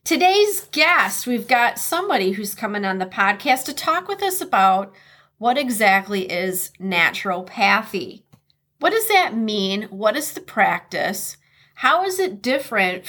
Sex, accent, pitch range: female, American, 190-260 Hz